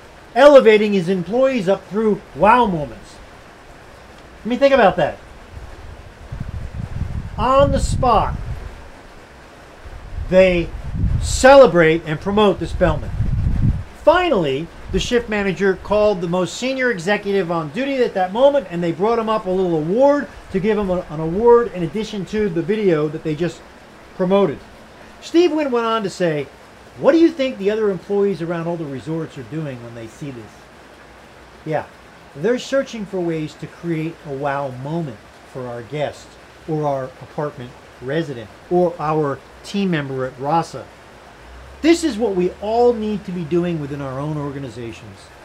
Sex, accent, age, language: male, American, 40-59, English